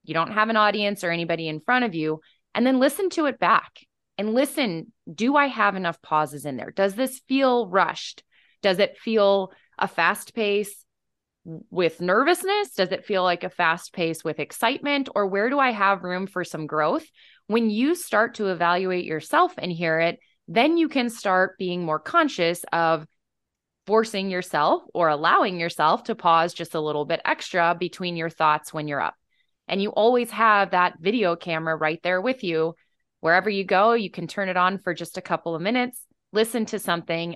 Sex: female